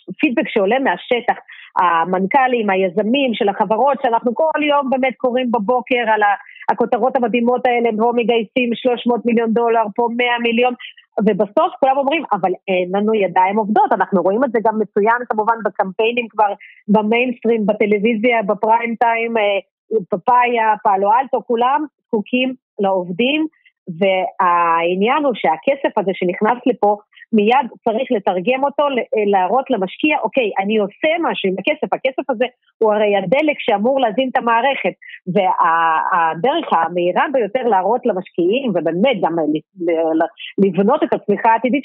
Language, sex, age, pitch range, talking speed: Hebrew, female, 30-49, 200-260 Hz, 130 wpm